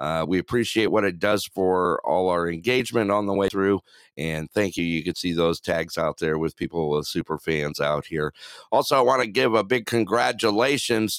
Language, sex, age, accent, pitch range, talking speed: English, male, 50-69, American, 80-110 Hz, 210 wpm